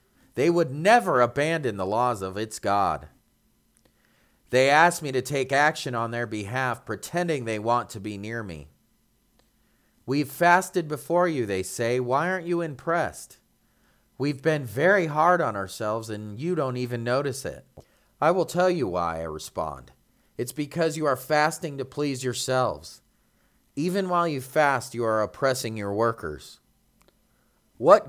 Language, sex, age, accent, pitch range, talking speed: English, male, 30-49, American, 115-155 Hz, 155 wpm